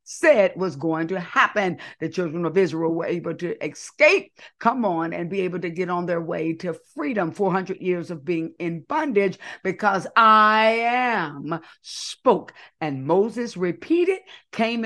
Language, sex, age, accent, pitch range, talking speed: English, female, 50-69, American, 180-240 Hz, 160 wpm